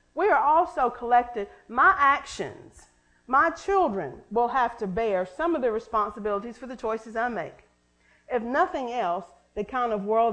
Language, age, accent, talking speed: English, 40-59, American, 165 wpm